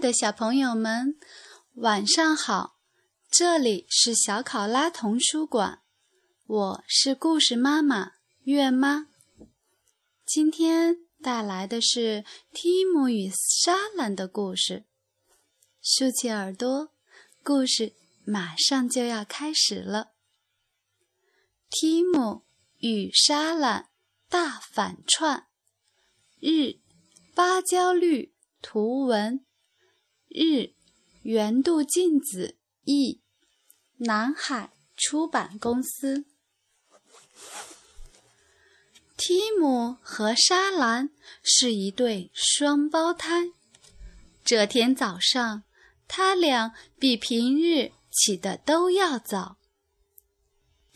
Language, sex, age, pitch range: Chinese, female, 20-39, 225-330 Hz